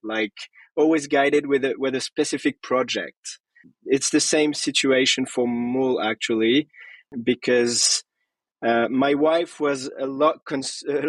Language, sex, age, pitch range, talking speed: English, male, 20-39, 130-155 Hz, 135 wpm